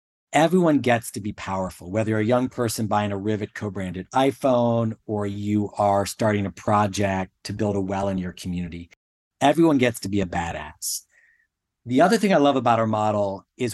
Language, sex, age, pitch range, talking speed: English, male, 40-59, 100-135 Hz, 190 wpm